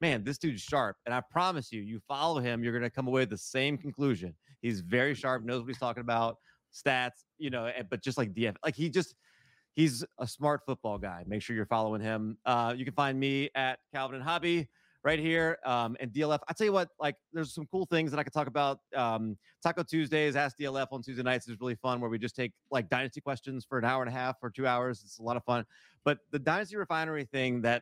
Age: 30-49